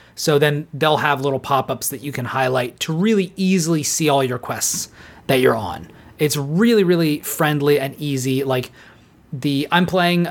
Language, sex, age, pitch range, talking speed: English, male, 30-49, 130-155 Hz, 175 wpm